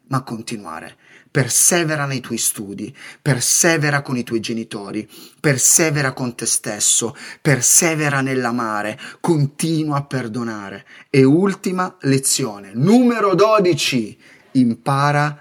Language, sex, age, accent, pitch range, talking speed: Italian, male, 30-49, native, 120-165 Hz, 100 wpm